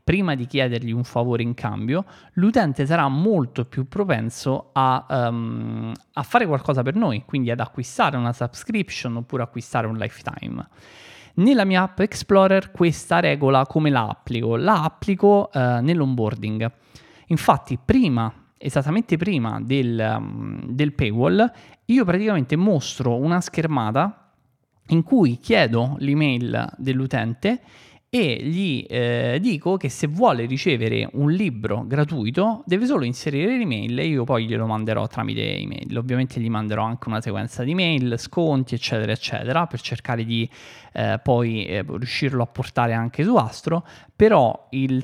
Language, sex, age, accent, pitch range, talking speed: Italian, male, 20-39, native, 120-165 Hz, 135 wpm